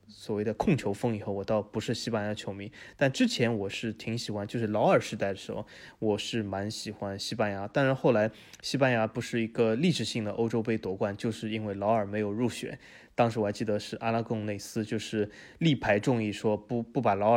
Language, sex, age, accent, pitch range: Chinese, male, 20-39, native, 105-120 Hz